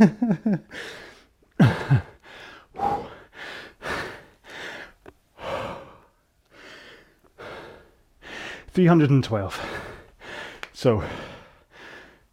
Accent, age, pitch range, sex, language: British, 30-49, 125-145 Hz, male, English